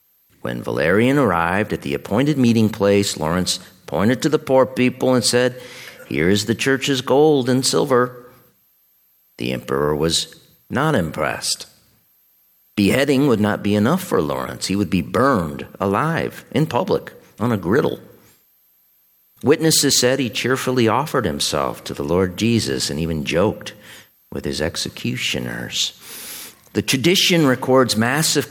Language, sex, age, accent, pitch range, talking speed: English, male, 50-69, American, 95-140 Hz, 135 wpm